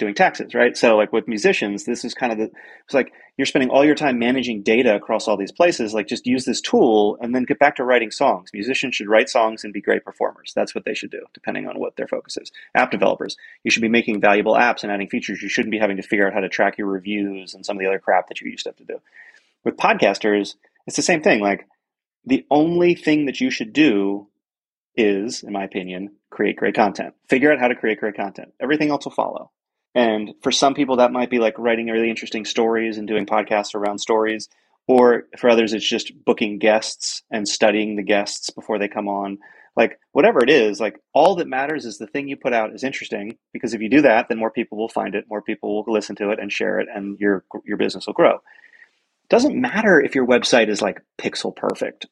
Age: 30-49